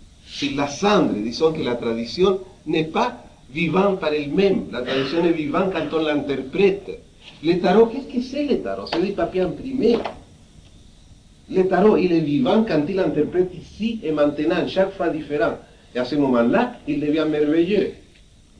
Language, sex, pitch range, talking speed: French, male, 120-190 Hz, 170 wpm